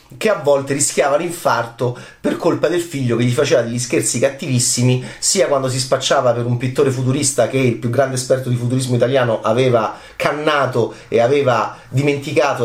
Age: 30-49